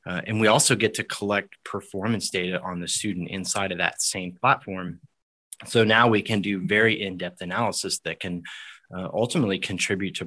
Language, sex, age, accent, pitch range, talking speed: English, male, 30-49, American, 90-110 Hz, 180 wpm